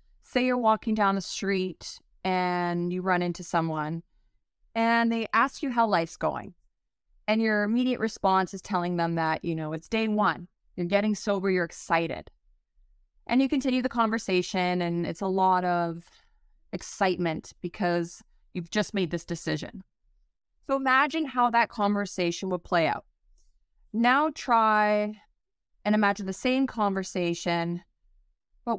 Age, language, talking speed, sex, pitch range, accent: 30-49, English, 145 wpm, female, 175-215 Hz, American